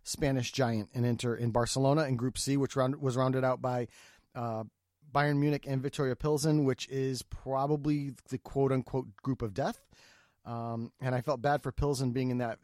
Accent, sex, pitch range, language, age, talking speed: American, male, 130-175 Hz, English, 30-49, 190 wpm